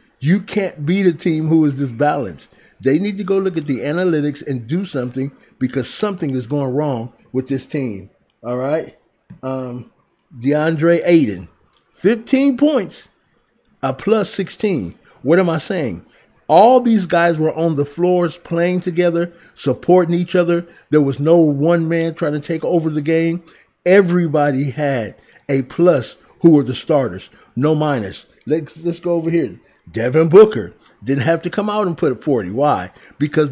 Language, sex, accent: English, male, American